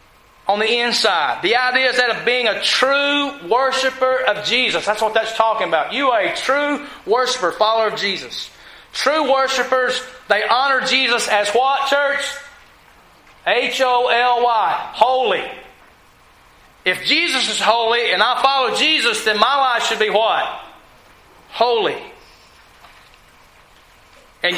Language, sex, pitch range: English, male, 180-255 Hz